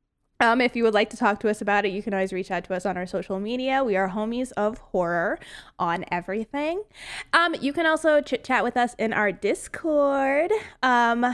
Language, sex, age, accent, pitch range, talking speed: English, female, 20-39, American, 215-285 Hz, 215 wpm